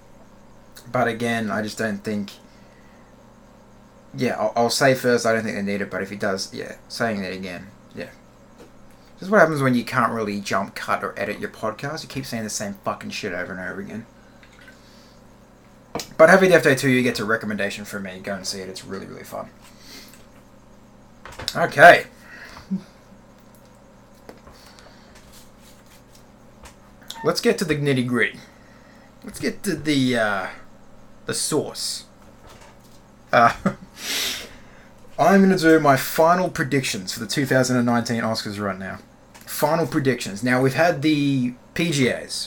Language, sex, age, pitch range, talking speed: English, male, 30-49, 115-160 Hz, 145 wpm